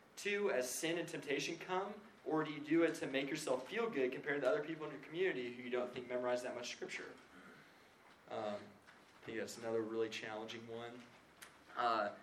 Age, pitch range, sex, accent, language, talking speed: 20-39, 120-170 Hz, male, American, English, 195 wpm